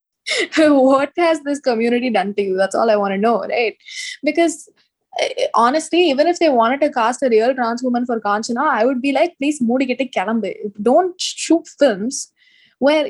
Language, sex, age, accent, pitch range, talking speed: Tamil, female, 20-39, native, 225-300 Hz, 185 wpm